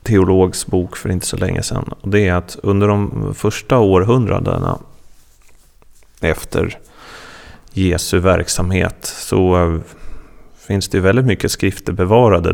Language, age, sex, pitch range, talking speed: Swedish, 30-49, male, 90-115 Hz, 120 wpm